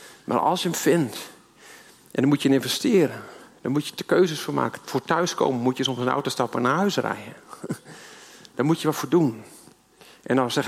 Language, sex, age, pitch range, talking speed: Dutch, male, 50-69, 135-190 Hz, 215 wpm